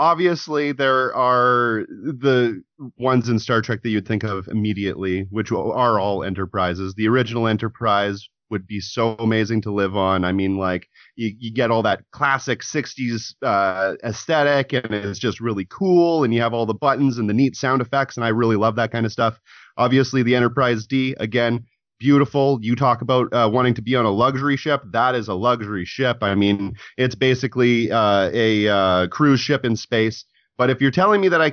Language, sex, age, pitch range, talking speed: English, male, 30-49, 110-140 Hz, 195 wpm